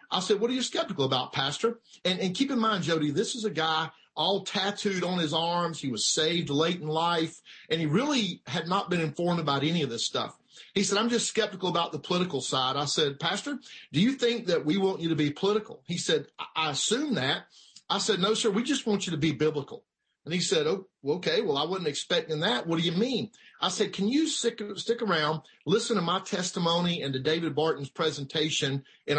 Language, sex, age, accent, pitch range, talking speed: English, male, 50-69, American, 150-200 Hz, 230 wpm